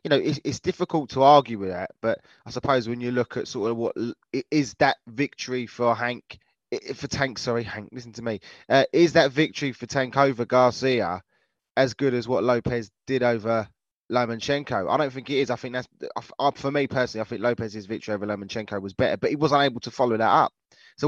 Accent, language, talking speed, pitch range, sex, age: British, English, 210 wpm, 115-140 Hz, male, 20-39